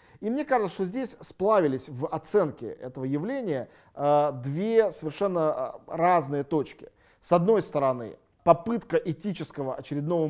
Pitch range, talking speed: 140-185 Hz, 115 wpm